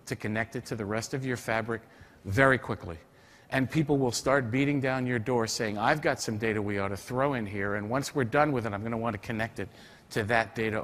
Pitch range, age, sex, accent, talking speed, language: 110-135 Hz, 50-69, male, American, 255 wpm, English